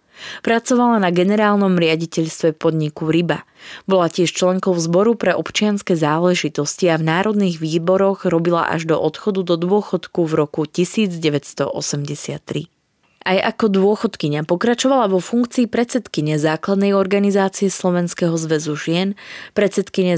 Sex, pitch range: female, 160-200 Hz